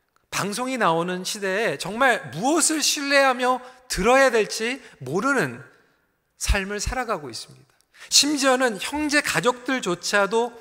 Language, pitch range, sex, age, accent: Korean, 165-245 Hz, male, 40-59, native